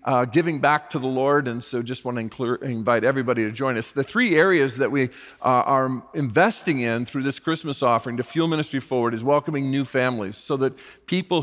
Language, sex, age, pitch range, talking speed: English, male, 50-69, 125-155 Hz, 210 wpm